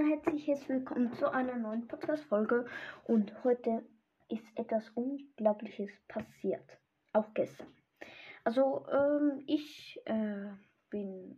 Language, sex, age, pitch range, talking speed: German, female, 10-29, 220-285 Hz, 105 wpm